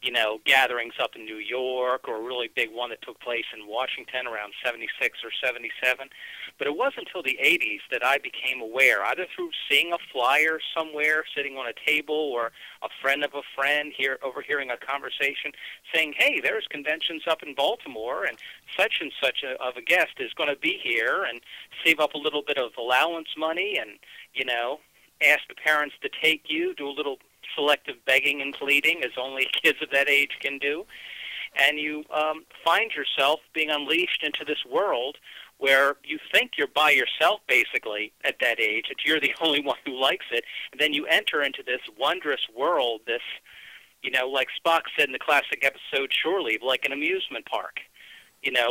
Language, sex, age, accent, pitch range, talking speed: English, male, 50-69, American, 135-165 Hz, 195 wpm